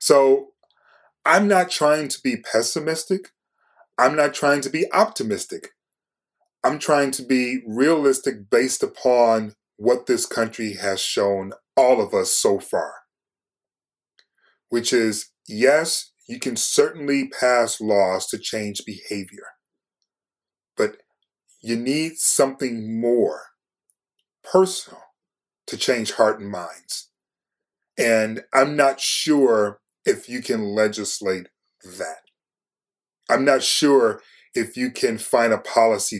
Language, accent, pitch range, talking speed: English, American, 110-165 Hz, 115 wpm